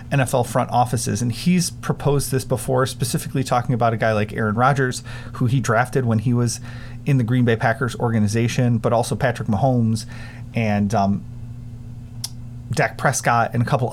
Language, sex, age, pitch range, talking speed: English, male, 30-49, 120-140 Hz, 170 wpm